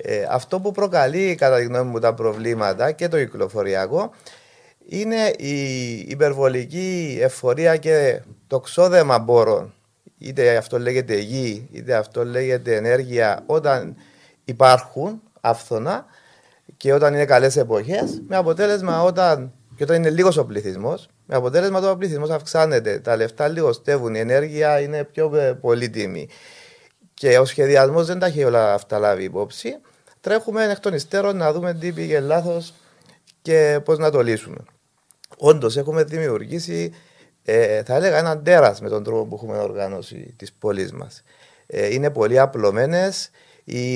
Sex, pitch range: male, 120-185 Hz